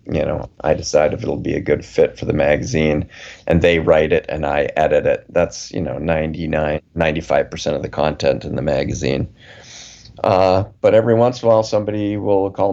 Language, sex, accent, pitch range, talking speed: English, male, American, 85-100 Hz, 195 wpm